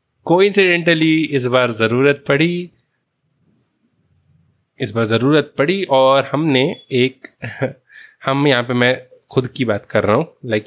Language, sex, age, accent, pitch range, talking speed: Hindi, male, 20-39, native, 125-165 Hz, 135 wpm